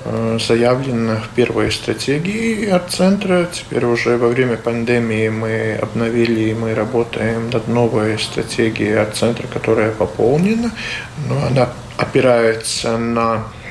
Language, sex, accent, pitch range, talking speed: Russian, male, native, 110-125 Hz, 120 wpm